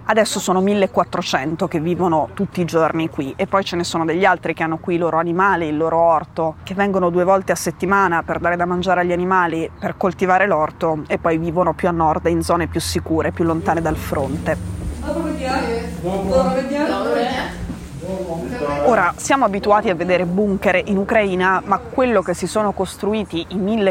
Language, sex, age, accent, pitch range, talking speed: Italian, female, 20-39, native, 170-200 Hz, 175 wpm